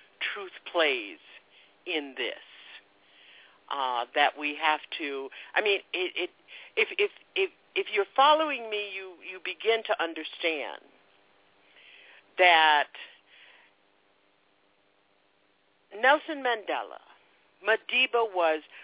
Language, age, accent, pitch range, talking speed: English, 60-79, American, 145-235 Hz, 95 wpm